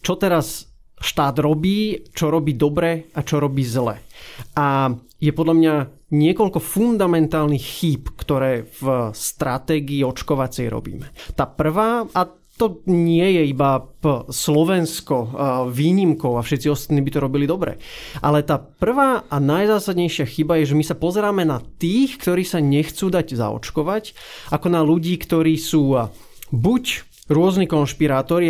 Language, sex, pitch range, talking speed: Slovak, male, 145-185 Hz, 135 wpm